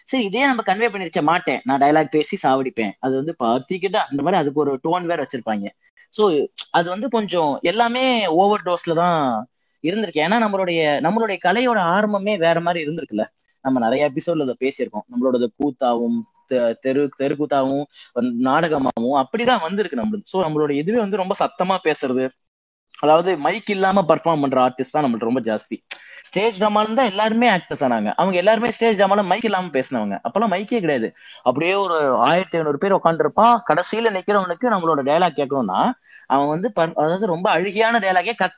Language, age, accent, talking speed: Tamil, 20-39, native, 150 wpm